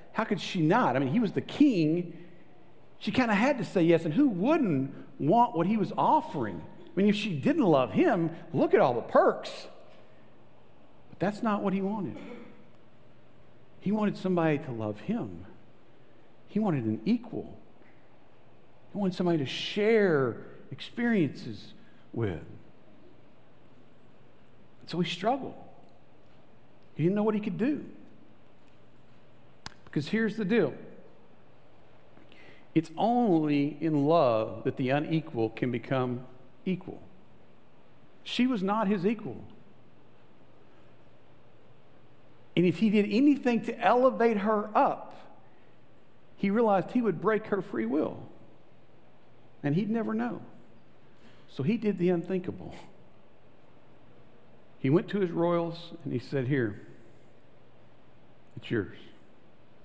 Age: 50-69